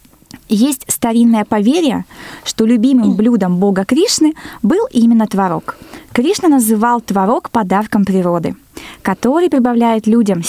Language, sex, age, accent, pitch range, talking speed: Russian, female, 20-39, native, 200-270 Hz, 110 wpm